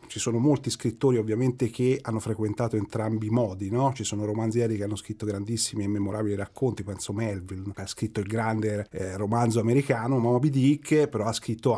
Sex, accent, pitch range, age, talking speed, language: male, native, 110-140 Hz, 40-59, 195 wpm, Italian